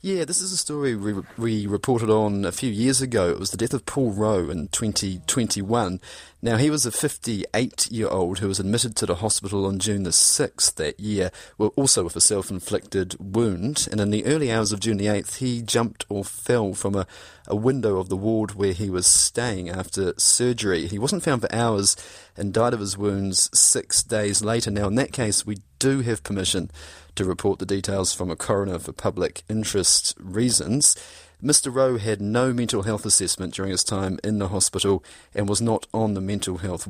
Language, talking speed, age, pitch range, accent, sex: English, 205 wpm, 30-49, 95-115 Hz, British, male